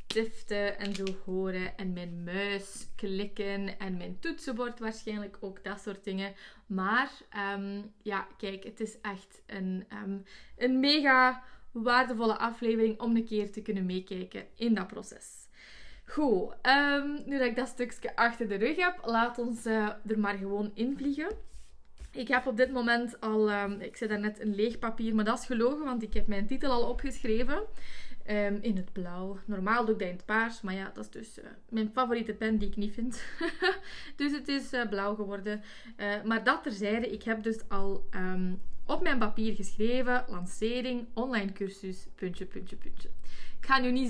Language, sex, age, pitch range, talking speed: Dutch, female, 20-39, 200-245 Hz, 185 wpm